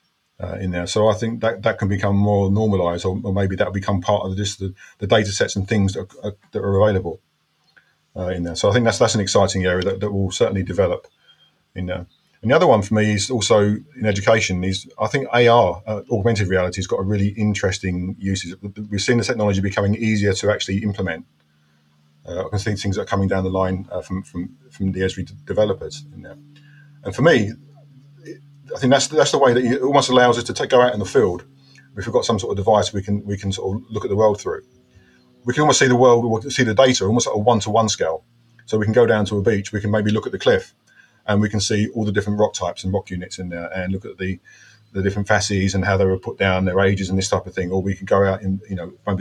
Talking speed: 260 wpm